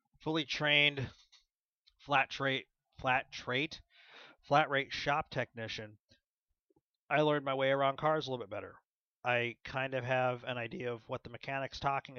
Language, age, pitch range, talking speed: English, 30-49, 115-145 Hz, 155 wpm